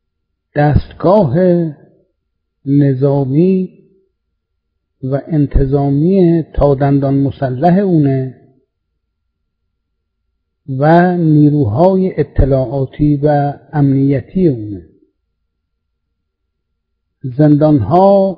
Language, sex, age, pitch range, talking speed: Persian, male, 50-69, 120-155 Hz, 45 wpm